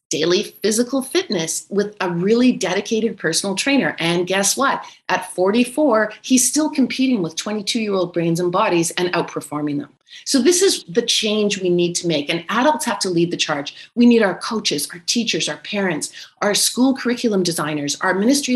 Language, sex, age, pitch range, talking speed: English, female, 40-59, 180-250 Hz, 185 wpm